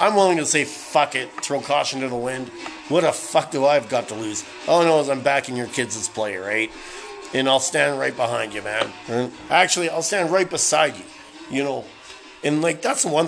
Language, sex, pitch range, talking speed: English, male, 110-140 Hz, 220 wpm